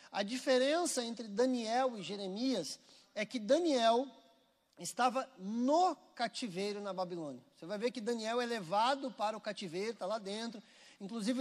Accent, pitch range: Brazilian, 215-265 Hz